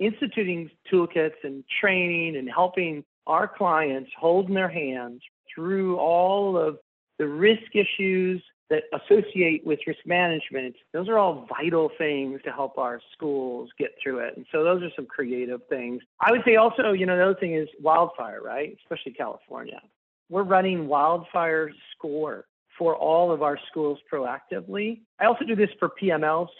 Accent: American